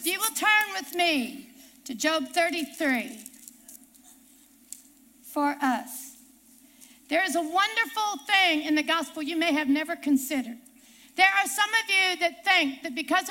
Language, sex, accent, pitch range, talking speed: English, female, American, 260-365 Hz, 145 wpm